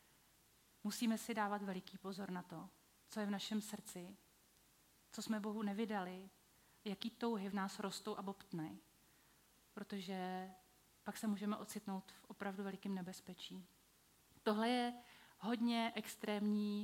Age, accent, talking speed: 30-49, native, 130 wpm